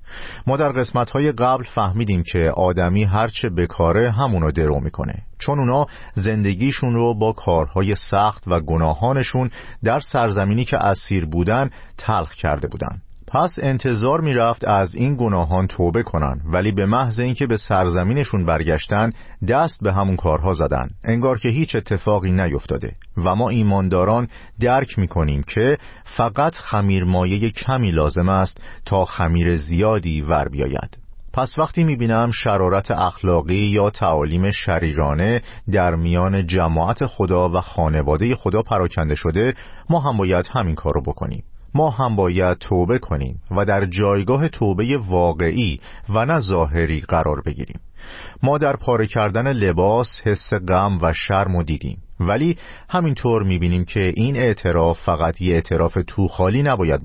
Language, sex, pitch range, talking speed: Persian, male, 85-120 Hz, 140 wpm